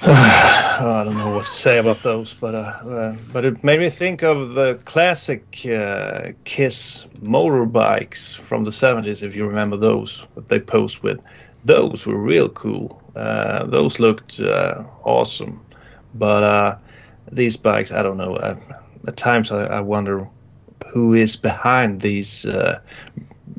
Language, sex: English, male